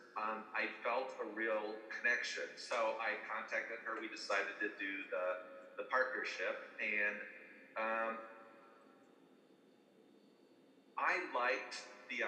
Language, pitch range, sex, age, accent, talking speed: English, 115-145 Hz, male, 40-59, American, 110 wpm